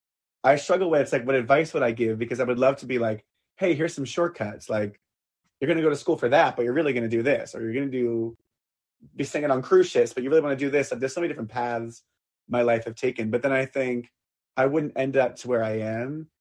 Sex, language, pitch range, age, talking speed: male, English, 110-135 Hz, 30-49, 270 wpm